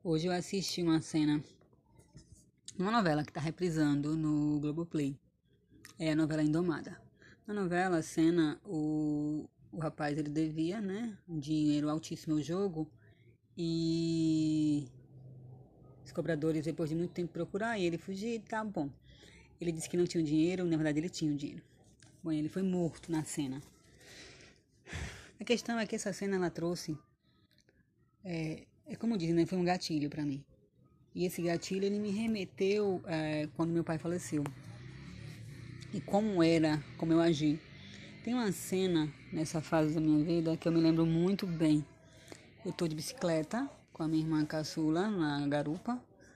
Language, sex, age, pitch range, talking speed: Portuguese, female, 20-39, 150-180 Hz, 160 wpm